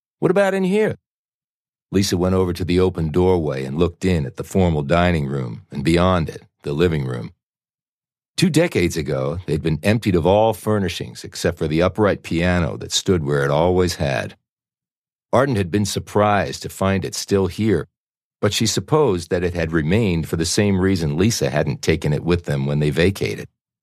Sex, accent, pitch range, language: male, American, 80-100 Hz, English